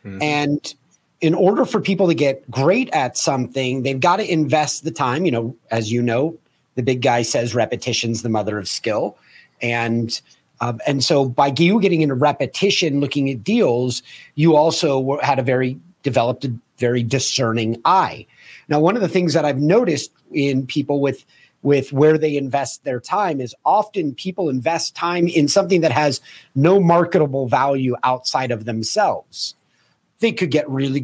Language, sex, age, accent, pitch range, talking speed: English, male, 30-49, American, 130-170 Hz, 170 wpm